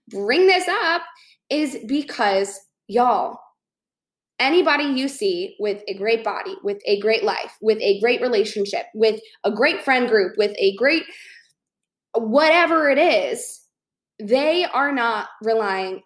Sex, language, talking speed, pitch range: female, English, 135 wpm, 215-295 Hz